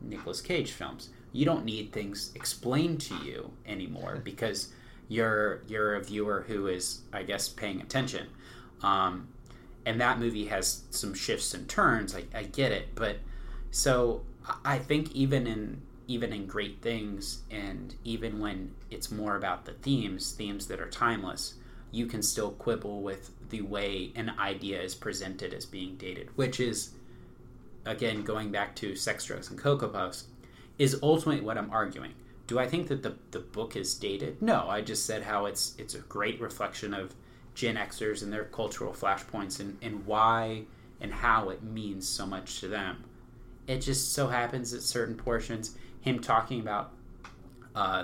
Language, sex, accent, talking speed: English, male, American, 170 wpm